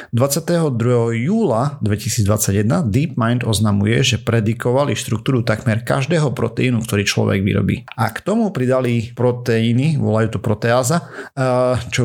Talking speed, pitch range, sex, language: 115 wpm, 110-130 Hz, male, Slovak